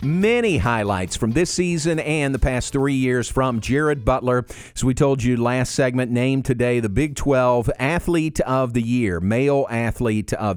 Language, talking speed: English, 175 wpm